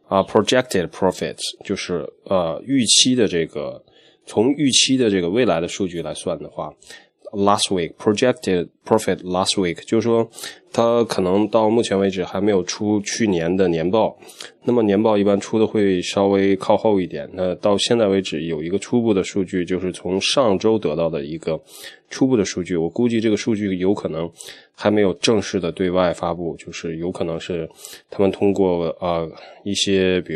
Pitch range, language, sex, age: 90-105 Hz, Chinese, male, 20-39